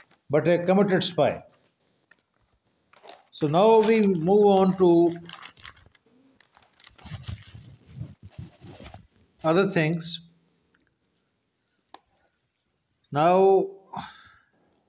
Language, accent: English, Indian